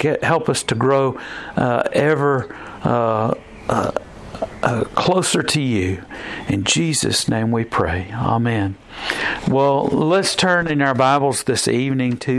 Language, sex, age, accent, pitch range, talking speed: English, male, 50-69, American, 115-140 Hz, 130 wpm